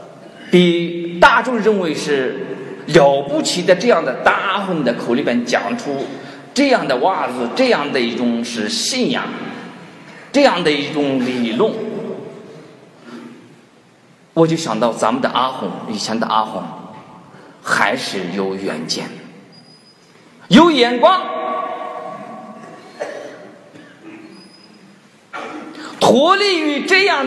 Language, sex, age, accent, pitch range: Chinese, male, 50-69, native, 175-280 Hz